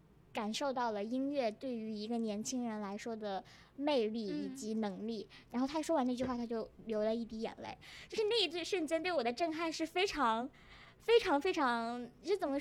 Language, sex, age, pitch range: Chinese, male, 20-39, 225-310 Hz